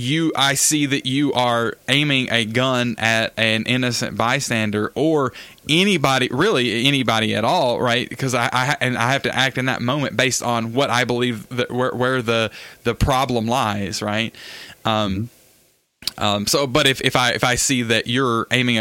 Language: English